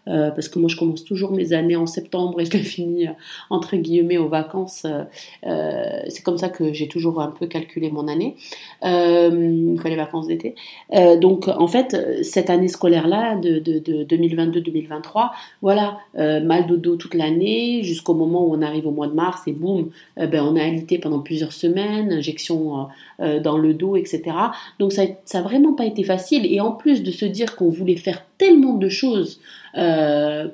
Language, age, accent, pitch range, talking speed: French, 40-59, French, 160-190 Hz, 190 wpm